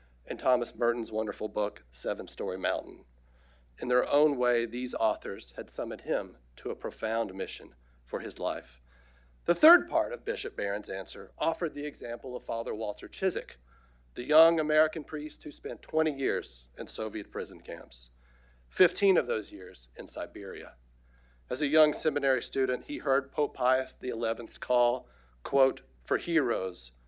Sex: male